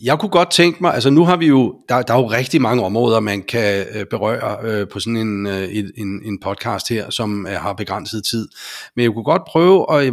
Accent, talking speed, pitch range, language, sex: native, 220 wpm, 105-140 Hz, Danish, male